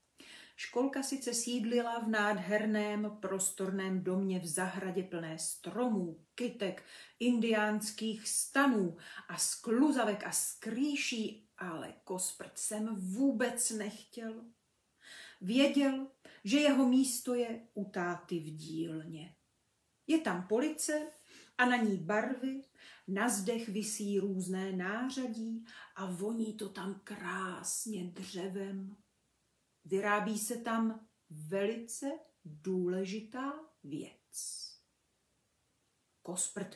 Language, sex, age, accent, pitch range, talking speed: Czech, female, 40-59, native, 190-250 Hz, 90 wpm